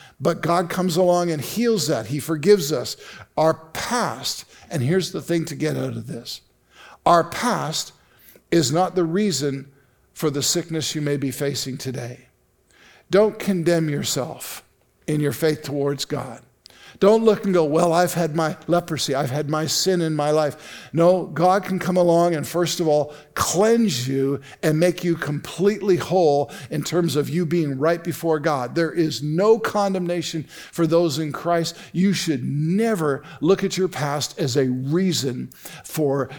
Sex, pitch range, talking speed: male, 140-175 Hz, 170 wpm